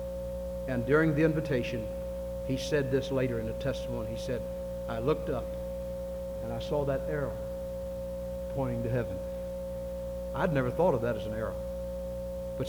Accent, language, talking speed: American, English, 155 wpm